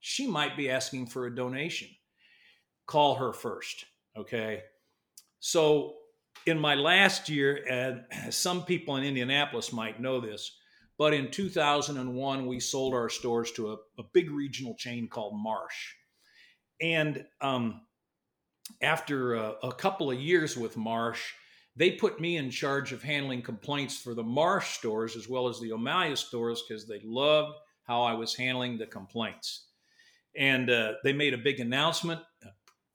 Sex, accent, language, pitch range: male, American, English, 120-150 Hz